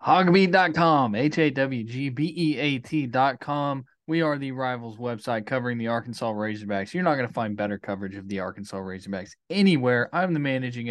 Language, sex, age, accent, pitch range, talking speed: English, male, 20-39, American, 110-145 Hz, 185 wpm